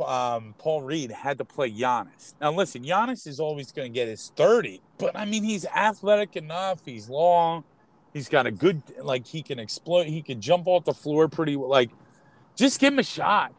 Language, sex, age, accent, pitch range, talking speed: English, male, 30-49, American, 145-220 Hz, 210 wpm